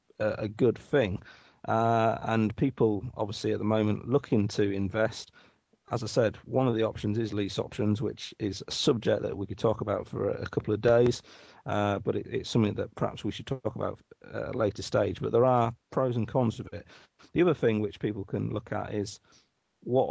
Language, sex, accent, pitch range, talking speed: English, male, British, 105-115 Hz, 210 wpm